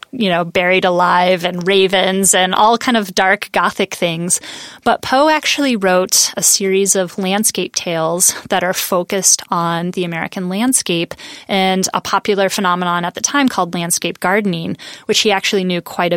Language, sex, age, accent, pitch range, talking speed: English, female, 20-39, American, 175-215 Hz, 165 wpm